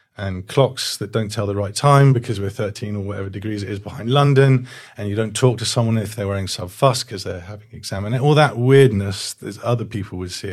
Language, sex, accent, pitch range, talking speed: English, male, British, 100-115 Hz, 235 wpm